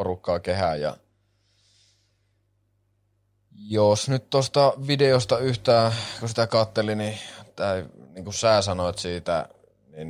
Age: 20-39